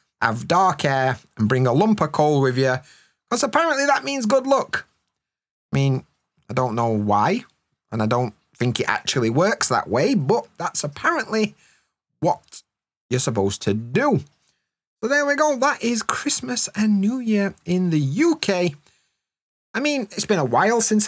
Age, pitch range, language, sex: 30-49, 140-215 Hz, English, male